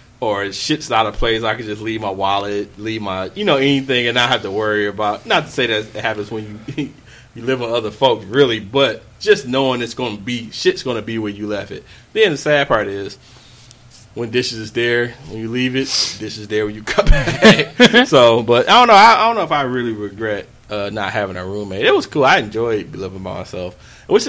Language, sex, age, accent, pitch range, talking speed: English, male, 20-39, American, 100-125 Hz, 240 wpm